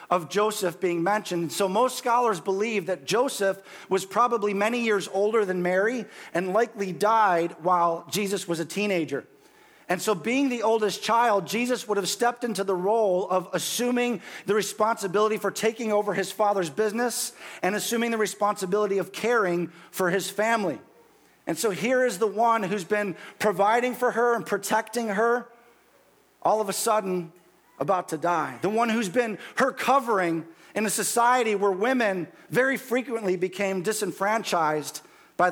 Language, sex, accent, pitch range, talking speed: English, male, American, 175-220 Hz, 160 wpm